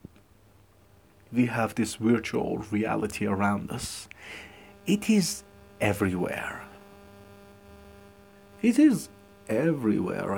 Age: 40-59